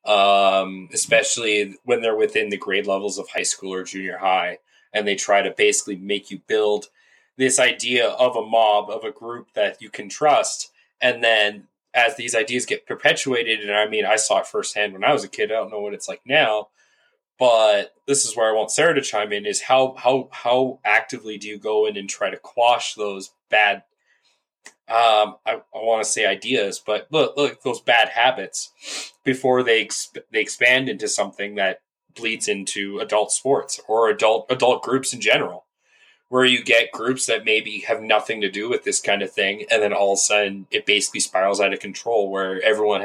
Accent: American